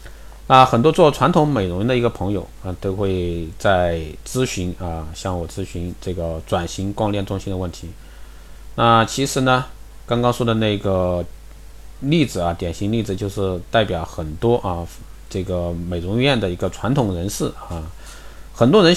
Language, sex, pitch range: Chinese, male, 90-120 Hz